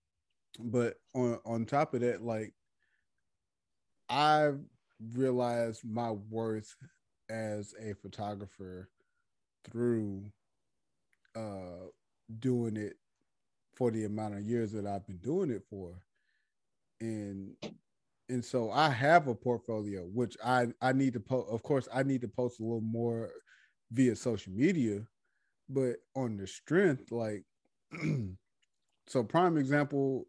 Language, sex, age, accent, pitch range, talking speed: English, male, 30-49, American, 105-130 Hz, 125 wpm